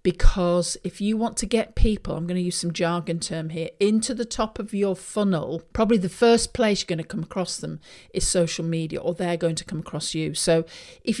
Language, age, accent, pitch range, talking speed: English, 50-69, British, 170-215 Hz, 230 wpm